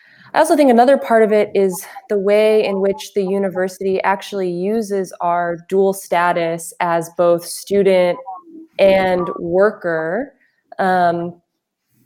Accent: American